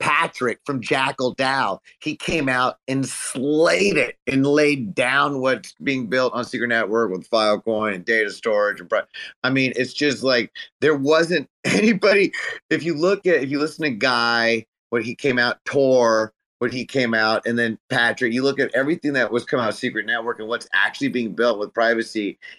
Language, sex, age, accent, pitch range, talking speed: English, male, 30-49, American, 100-135 Hz, 190 wpm